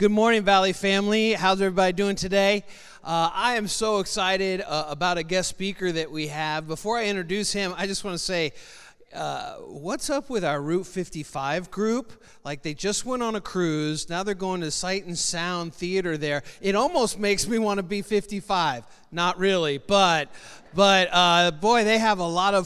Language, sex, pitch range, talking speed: English, male, 155-195 Hz, 190 wpm